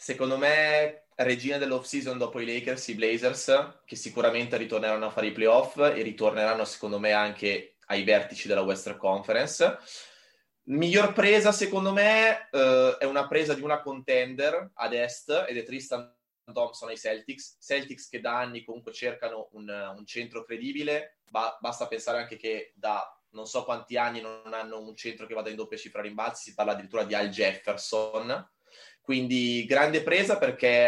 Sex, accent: male, native